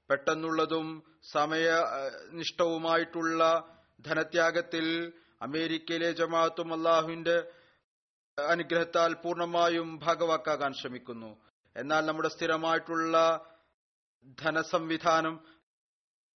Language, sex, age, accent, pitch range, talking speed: Malayalam, male, 30-49, native, 155-165 Hz, 50 wpm